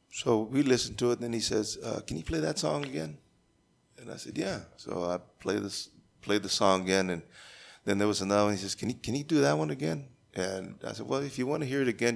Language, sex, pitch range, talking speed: English, male, 95-120 Hz, 270 wpm